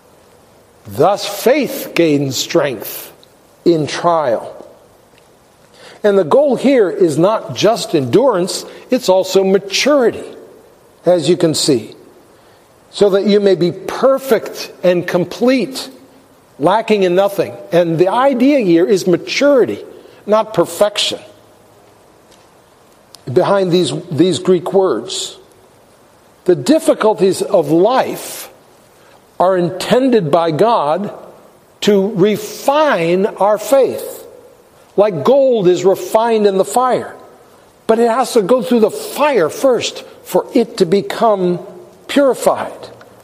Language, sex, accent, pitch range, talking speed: English, male, American, 175-245 Hz, 110 wpm